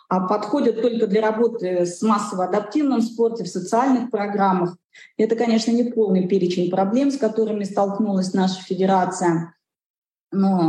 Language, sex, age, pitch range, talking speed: Russian, female, 20-39, 180-215 Hz, 135 wpm